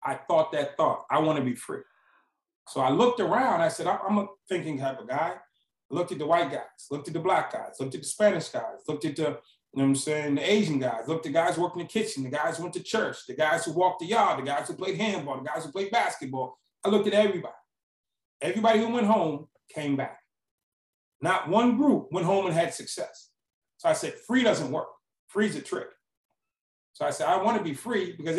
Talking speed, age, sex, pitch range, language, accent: 245 wpm, 30-49, male, 155-205 Hz, English, American